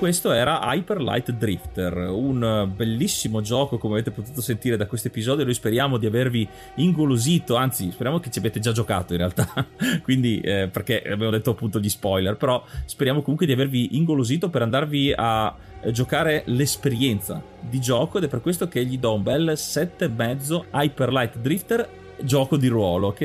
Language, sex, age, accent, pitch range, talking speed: Italian, male, 30-49, native, 110-145 Hz, 180 wpm